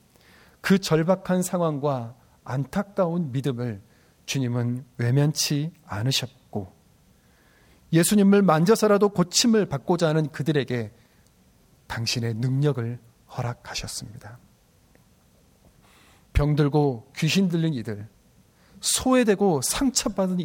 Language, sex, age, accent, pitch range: Korean, male, 40-59, native, 120-180 Hz